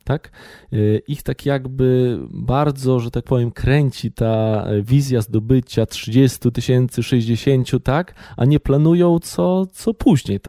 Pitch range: 110-155 Hz